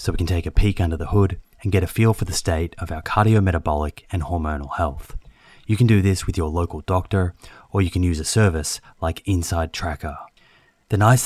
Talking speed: 220 wpm